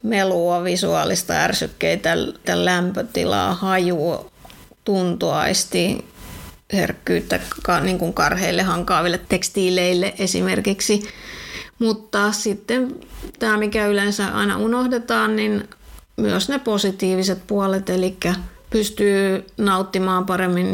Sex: female